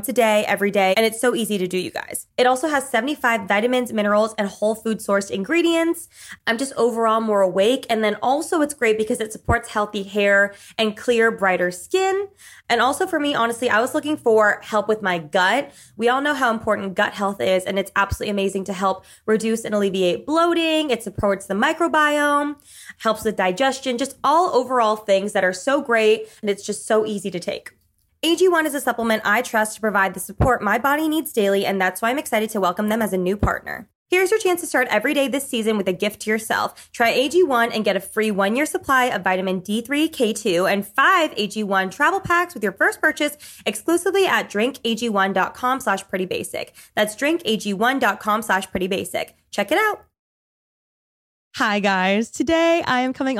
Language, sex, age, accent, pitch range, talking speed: English, female, 20-39, American, 205-270 Hz, 195 wpm